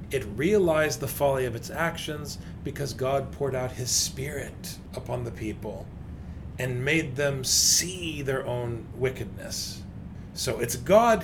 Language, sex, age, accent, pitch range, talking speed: English, male, 40-59, American, 110-165 Hz, 140 wpm